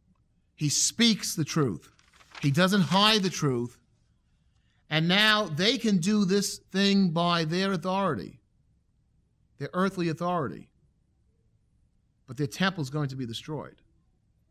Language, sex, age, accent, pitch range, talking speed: English, male, 40-59, American, 140-195 Hz, 125 wpm